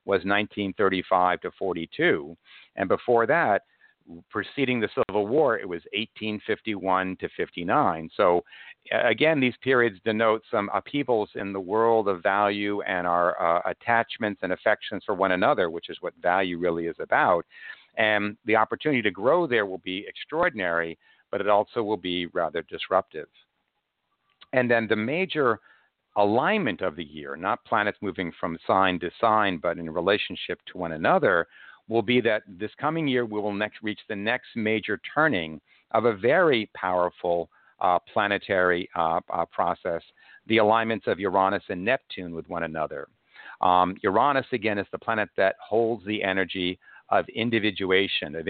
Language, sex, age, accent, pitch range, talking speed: English, male, 50-69, American, 90-110 Hz, 155 wpm